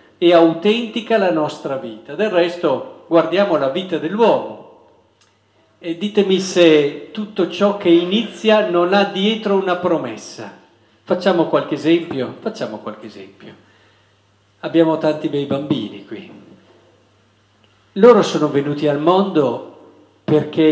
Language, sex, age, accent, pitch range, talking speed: Italian, male, 50-69, native, 140-190 Hz, 115 wpm